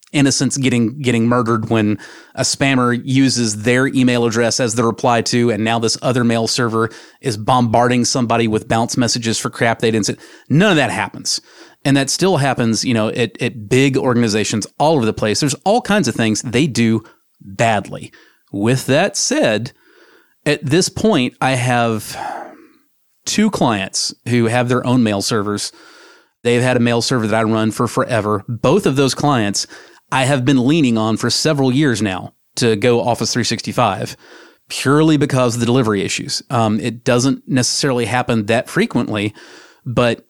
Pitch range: 110-130 Hz